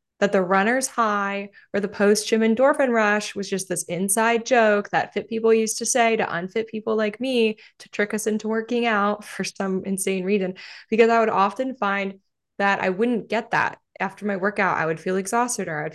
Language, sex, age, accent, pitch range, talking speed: English, female, 10-29, American, 190-225 Hz, 205 wpm